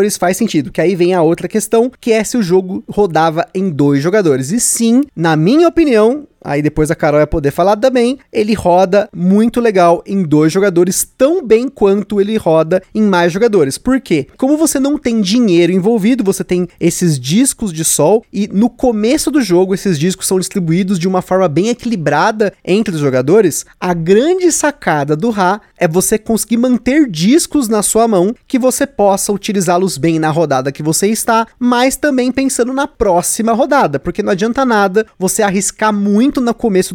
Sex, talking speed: male, 185 wpm